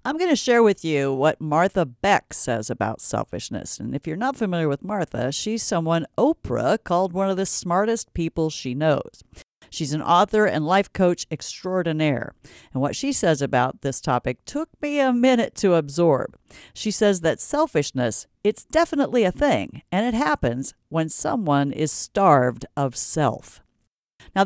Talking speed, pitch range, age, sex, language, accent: 165 wpm, 140-205 Hz, 50-69, female, English, American